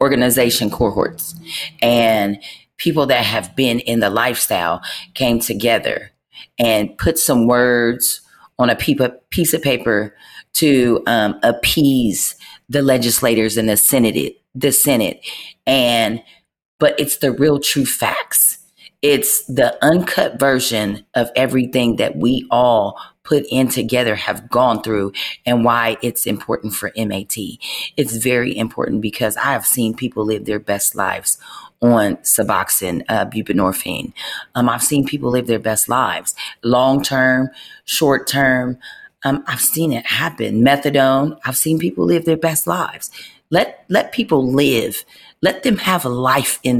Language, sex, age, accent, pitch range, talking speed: English, female, 40-59, American, 115-140 Hz, 140 wpm